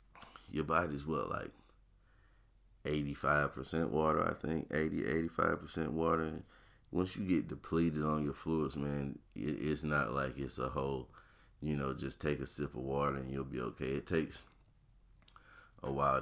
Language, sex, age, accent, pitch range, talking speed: English, male, 30-49, American, 70-85 Hz, 150 wpm